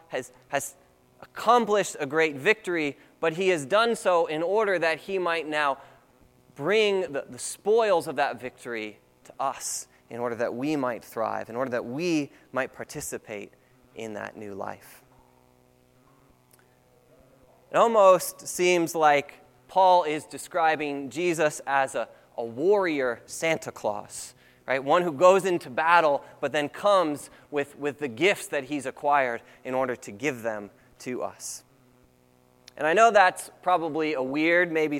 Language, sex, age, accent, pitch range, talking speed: English, male, 20-39, American, 125-170 Hz, 150 wpm